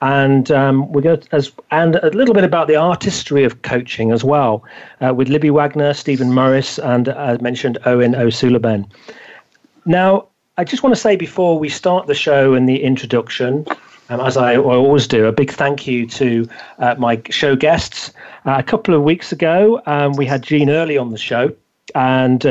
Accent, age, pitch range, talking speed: British, 40-59, 125-150 Hz, 185 wpm